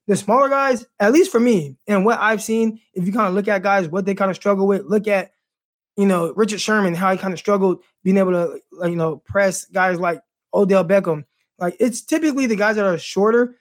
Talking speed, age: 240 wpm, 20-39